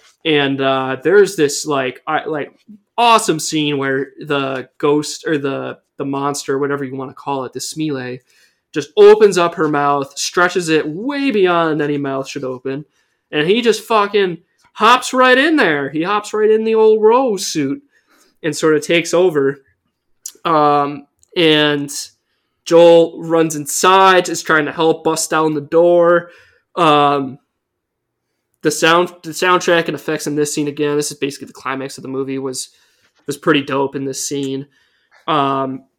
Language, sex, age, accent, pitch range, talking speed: English, male, 20-39, American, 140-170 Hz, 165 wpm